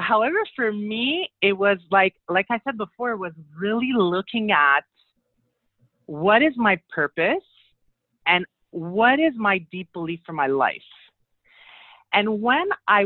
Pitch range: 165-215 Hz